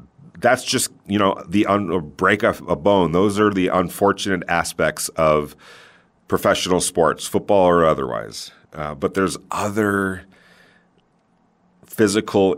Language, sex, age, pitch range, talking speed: English, male, 40-59, 80-95 Hz, 120 wpm